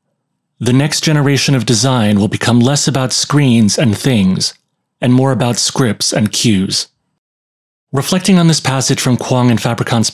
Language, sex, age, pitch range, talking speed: English, male, 30-49, 110-140 Hz, 155 wpm